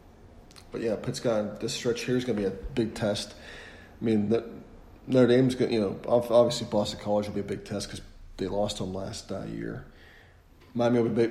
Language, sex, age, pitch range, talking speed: English, male, 40-59, 100-115 Hz, 205 wpm